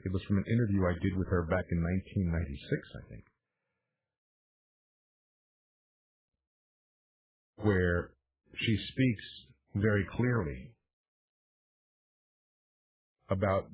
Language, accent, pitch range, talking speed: English, American, 90-145 Hz, 85 wpm